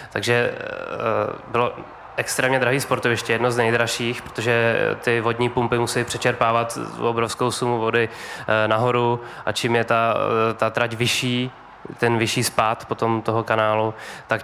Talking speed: 135 wpm